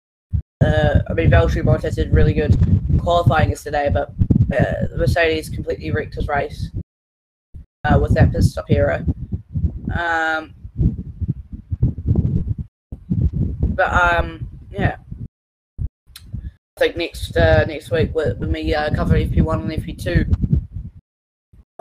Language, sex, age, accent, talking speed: English, female, 20-39, British, 120 wpm